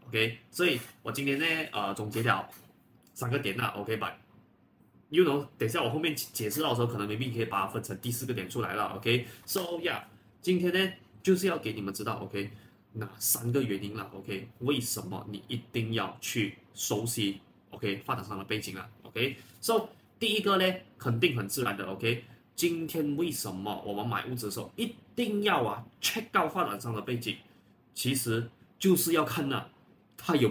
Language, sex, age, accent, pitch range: Chinese, male, 20-39, native, 110-175 Hz